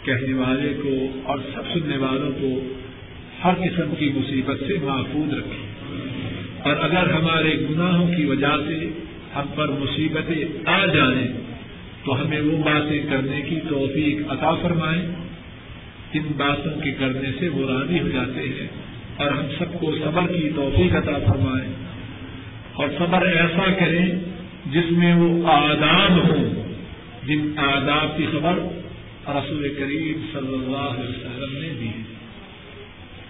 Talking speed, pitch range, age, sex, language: 130 wpm, 125-150 Hz, 50-69, male, Urdu